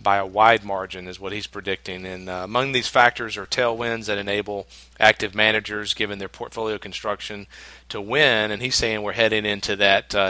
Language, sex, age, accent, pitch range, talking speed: English, male, 40-59, American, 95-110 Hz, 190 wpm